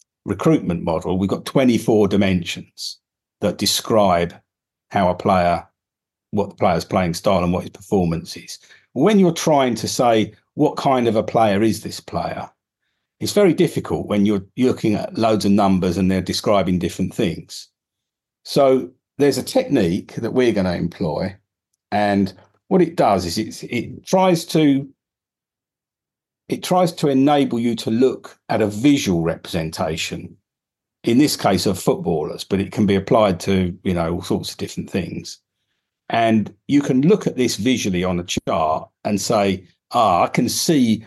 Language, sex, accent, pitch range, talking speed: English, male, British, 95-125 Hz, 160 wpm